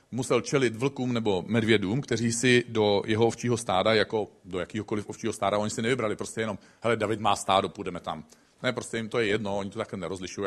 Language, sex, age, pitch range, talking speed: Czech, male, 40-59, 110-155 Hz, 210 wpm